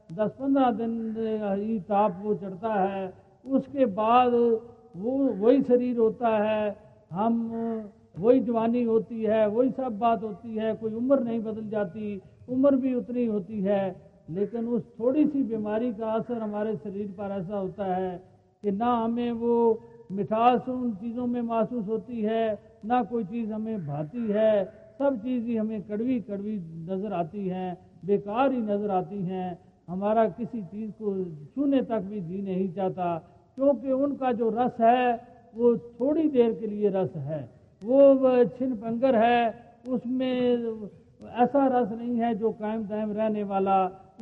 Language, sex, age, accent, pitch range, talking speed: Hindi, male, 50-69, native, 200-245 Hz, 155 wpm